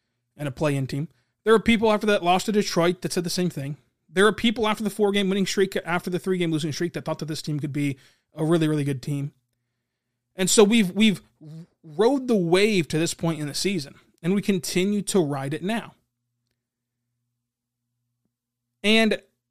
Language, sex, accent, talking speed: English, male, American, 195 wpm